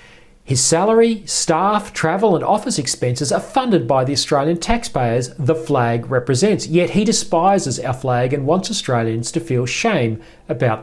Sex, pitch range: male, 130-195 Hz